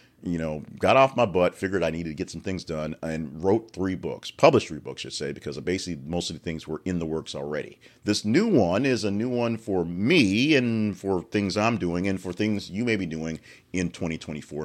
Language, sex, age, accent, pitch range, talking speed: English, male, 40-59, American, 85-120 Hz, 235 wpm